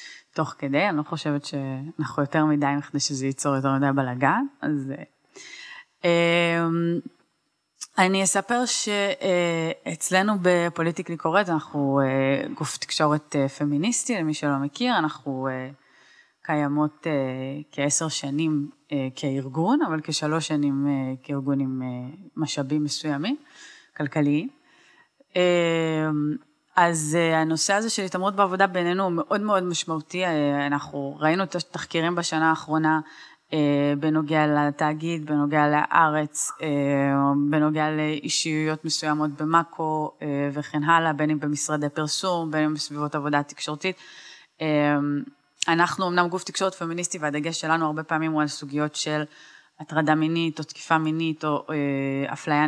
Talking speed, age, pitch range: 120 wpm, 20-39, 145-170 Hz